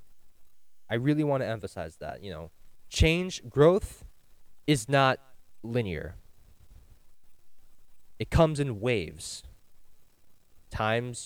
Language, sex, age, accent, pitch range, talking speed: English, male, 20-39, American, 90-130 Hz, 95 wpm